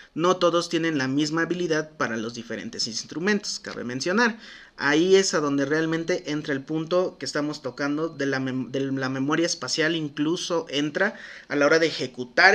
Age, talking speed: 30-49, 165 wpm